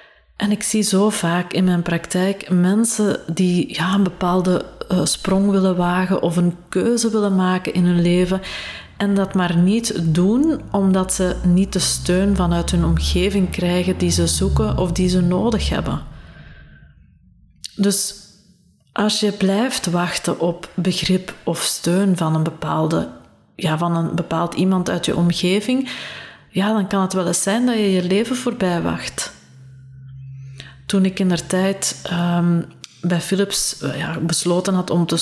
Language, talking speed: Dutch, 150 wpm